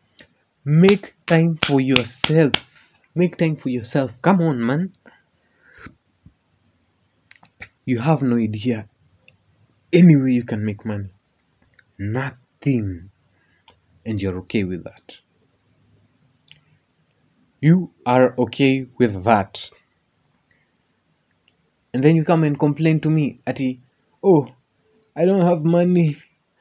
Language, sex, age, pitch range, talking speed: Swahili, male, 30-49, 115-150 Hz, 105 wpm